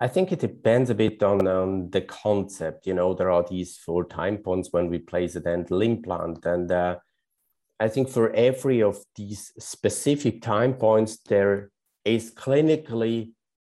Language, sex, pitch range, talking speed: English, male, 90-115 Hz, 170 wpm